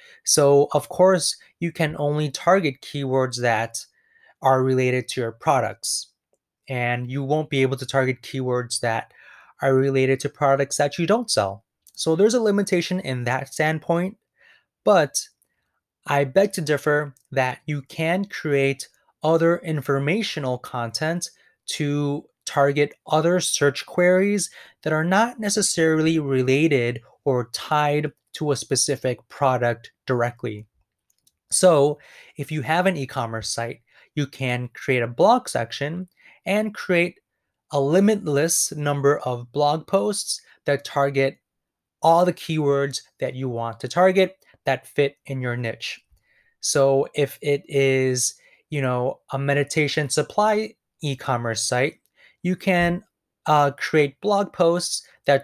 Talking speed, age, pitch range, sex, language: 130 wpm, 20-39, 130-170 Hz, male, English